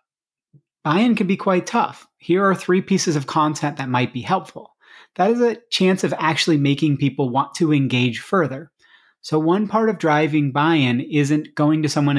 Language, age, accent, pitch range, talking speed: English, 30-49, American, 130-165 Hz, 180 wpm